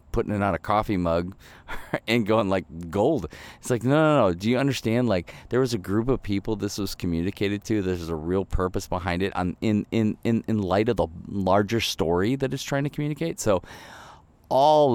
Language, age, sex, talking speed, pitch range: English, 30-49, male, 210 wpm, 90-120 Hz